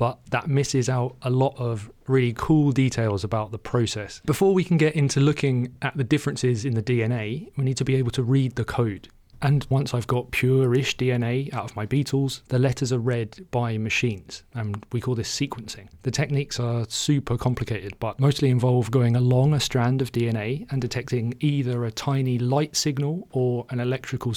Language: English